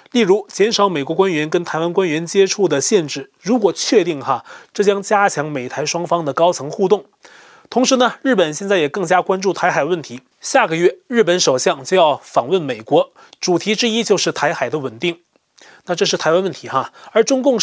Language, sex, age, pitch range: Chinese, male, 30-49, 175-225 Hz